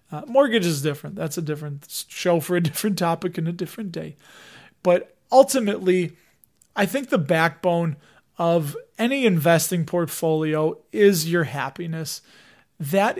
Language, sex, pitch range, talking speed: English, male, 160-205 Hz, 135 wpm